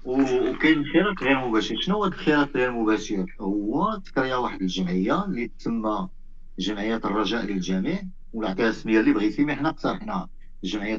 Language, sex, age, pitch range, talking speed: Arabic, male, 50-69, 110-175 Hz, 145 wpm